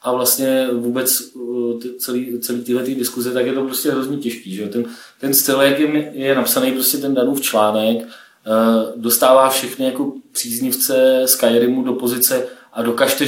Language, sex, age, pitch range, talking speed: Czech, male, 30-49, 120-140 Hz, 165 wpm